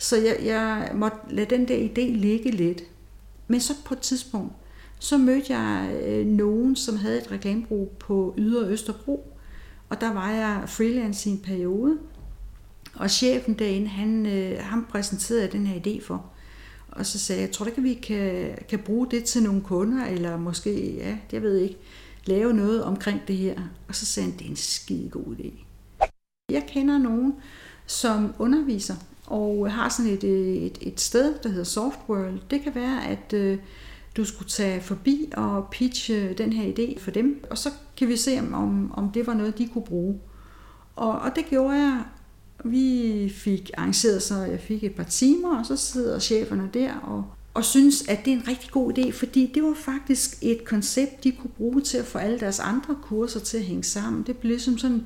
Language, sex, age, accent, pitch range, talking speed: Danish, female, 60-79, native, 195-250 Hz, 195 wpm